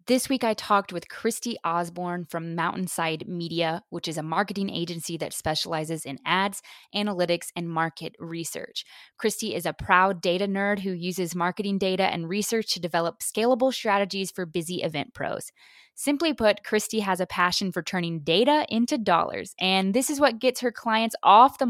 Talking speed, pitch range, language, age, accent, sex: 175 wpm, 175-220 Hz, English, 20-39, American, female